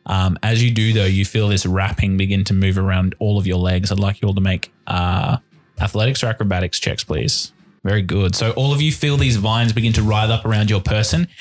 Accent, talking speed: Australian, 235 wpm